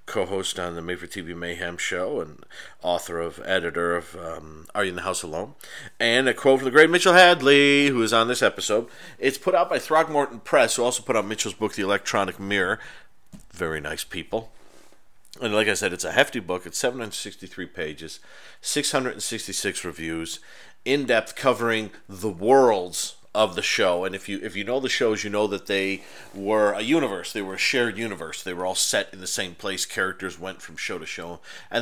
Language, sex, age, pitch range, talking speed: English, male, 40-59, 90-115 Hz, 200 wpm